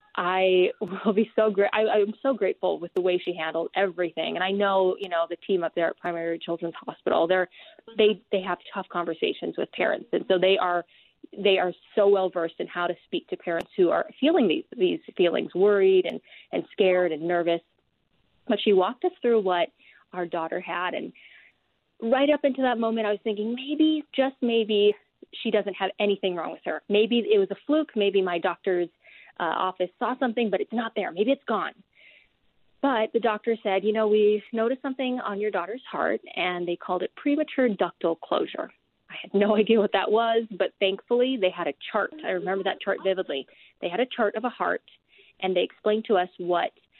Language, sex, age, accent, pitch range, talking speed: English, female, 20-39, American, 180-230 Hz, 205 wpm